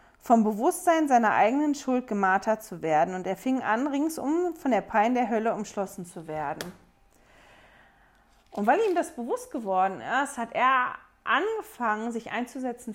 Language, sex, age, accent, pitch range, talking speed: German, female, 40-59, German, 215-295 Hz, 155 wpm